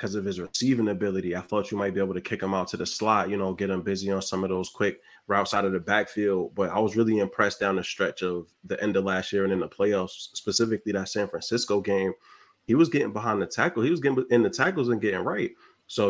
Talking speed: 265 wpm